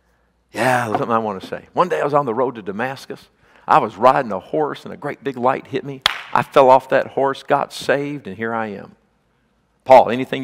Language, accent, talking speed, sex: English, American, 235 wpm, male